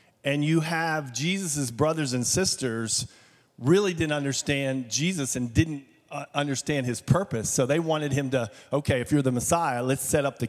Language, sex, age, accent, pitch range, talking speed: English, male, 40-59, American, 120-155 Hz, 170 wpm